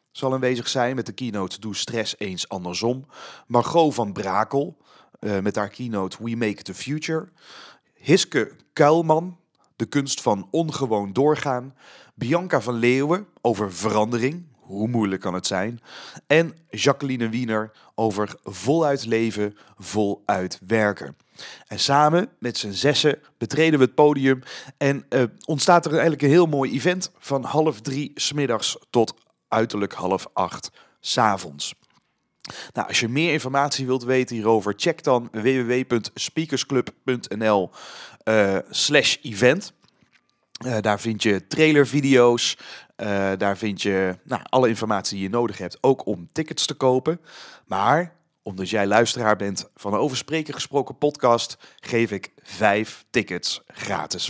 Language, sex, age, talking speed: Dutch, male, 40-59, 130 wpm